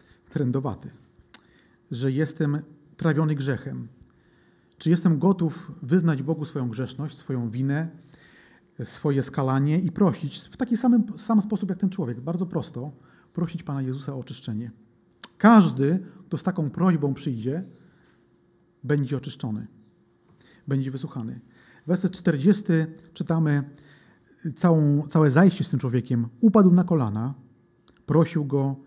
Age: 40-59